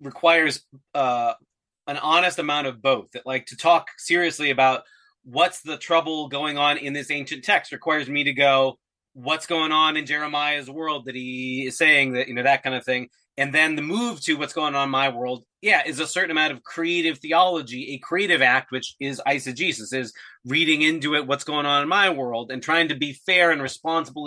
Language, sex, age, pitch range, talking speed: English, male, 30-49, 135-165 Hz, 210 wpm